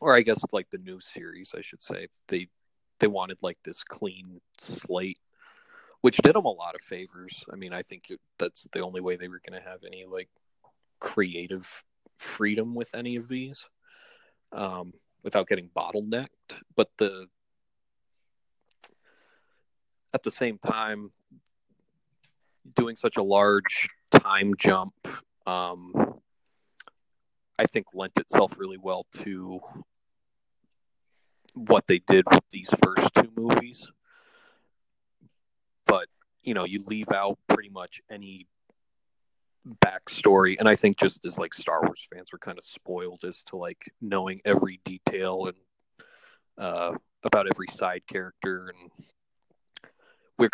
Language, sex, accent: English, male, American